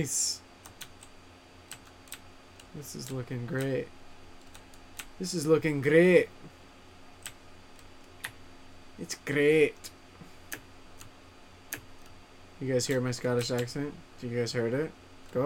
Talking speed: 85 wpm